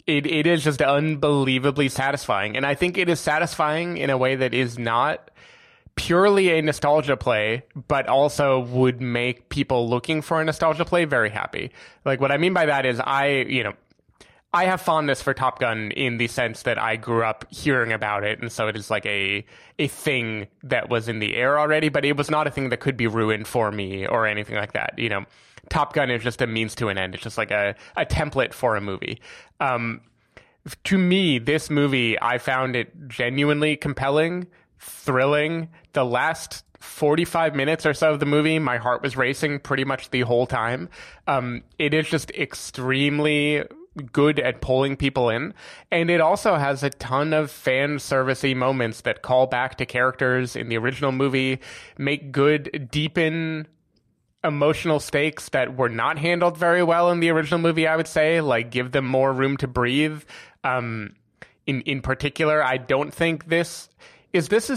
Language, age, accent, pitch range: English, 20-39, American, 125-155 Hz